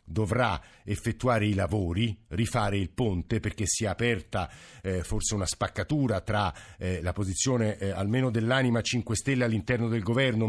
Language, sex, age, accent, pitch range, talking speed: Italian, male, 50-69, native, 105-125 Hz, 150 wpm